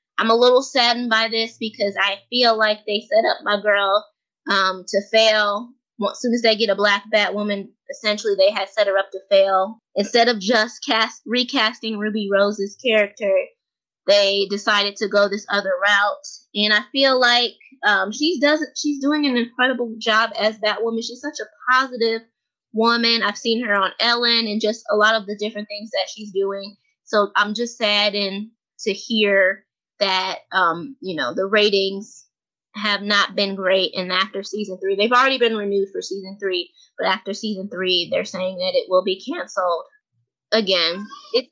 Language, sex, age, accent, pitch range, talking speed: English, female, 20-39, American, 200-240 Hz, 185 wpm